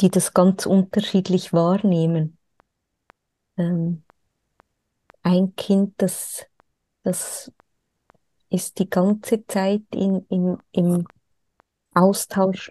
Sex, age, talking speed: female, 20-39, 85 wpm